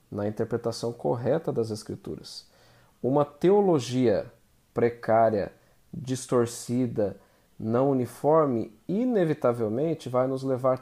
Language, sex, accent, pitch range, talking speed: Portuguese, male, Brazilian, 115-145 Hz, 85 wpm